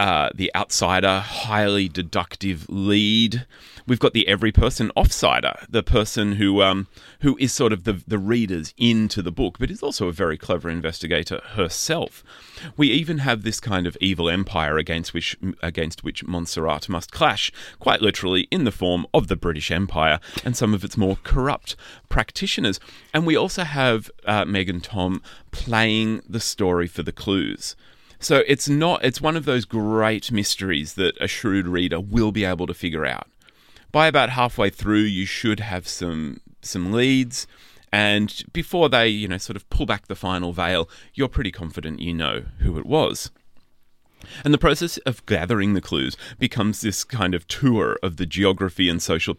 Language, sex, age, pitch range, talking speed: English, male, 30-49, 90-115 Hz, 175 wpm